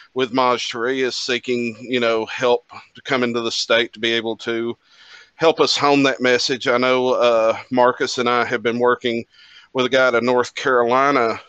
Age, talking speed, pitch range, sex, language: 40-59, 195 wpm, 120-135 Hz, male, English